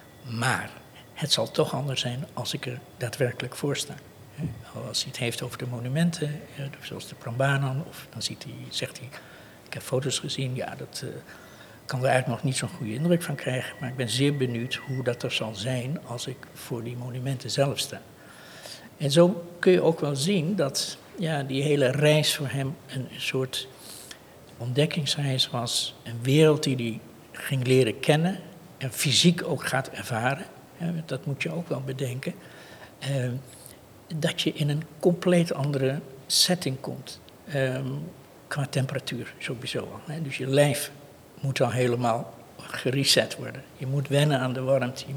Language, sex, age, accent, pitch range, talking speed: Dutch, male, 60-79, Dutch, 130-150 Hz, 160 wpm